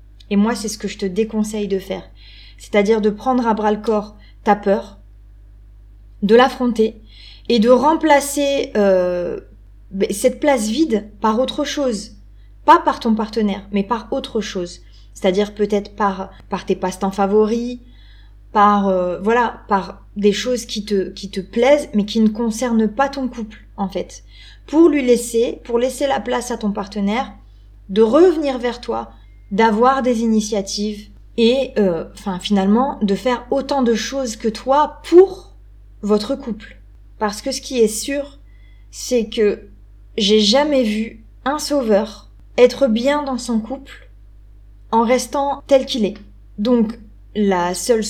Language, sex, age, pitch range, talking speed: French, female, 20-39, 195-245 Hz, 155 wpm